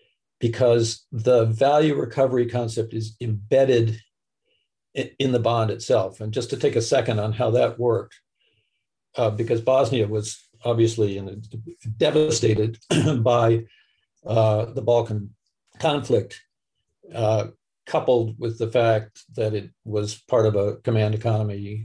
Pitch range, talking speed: 110-125 Hz, 125 wpm